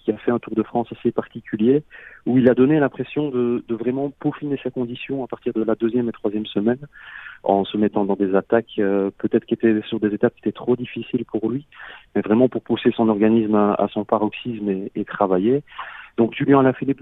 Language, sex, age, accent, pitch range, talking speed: French, male, 40-59, French, 110-135 Hz, 220 wpm